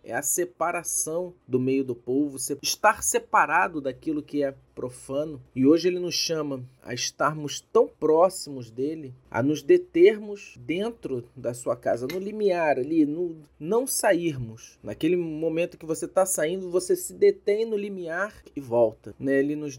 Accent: Brazilian